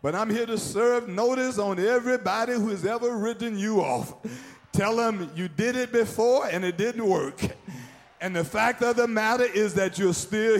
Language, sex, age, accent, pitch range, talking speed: English, male, 50-69, American, 195-250 Hz, 190 wpm